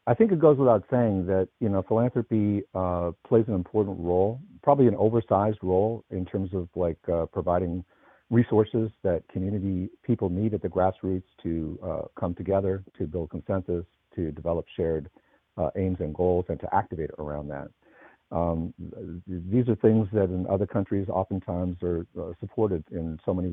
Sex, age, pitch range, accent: male, 50-69, 90-105 Hz, American